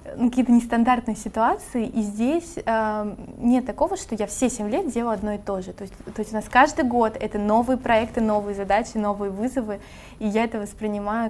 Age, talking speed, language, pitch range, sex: 20-39, 195 wpm, Russian, 205-235 Hz, female